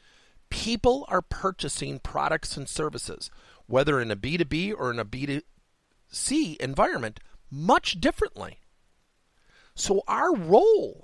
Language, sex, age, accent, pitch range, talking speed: English, male, 50-69, American, 90-140 Hz, 110 wpm